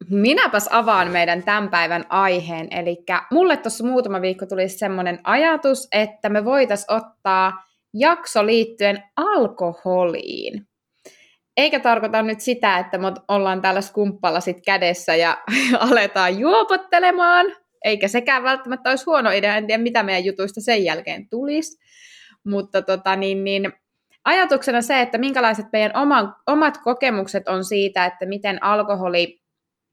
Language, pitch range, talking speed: Finnish, 190-265 Hz, 130 wpm